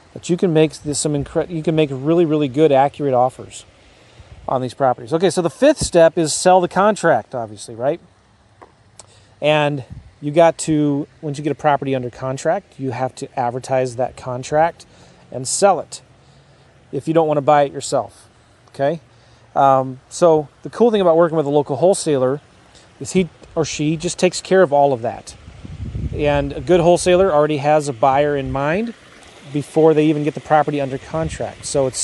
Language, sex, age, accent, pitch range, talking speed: English, male, 30-49, American, 130-155 Hz, 185 wpm